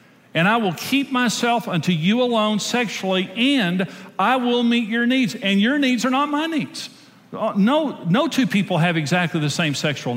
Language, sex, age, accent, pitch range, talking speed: English, male, 50-69, American, 175-230 Hz, 185 wpm